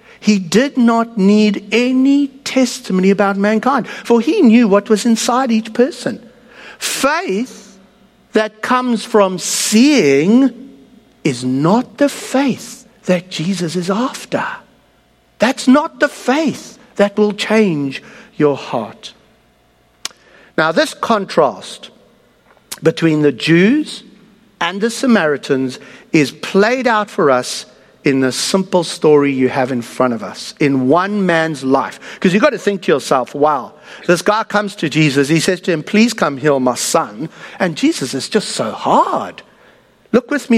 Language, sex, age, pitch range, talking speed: English, male, 60-79, 160-235 Hz, 145 wpm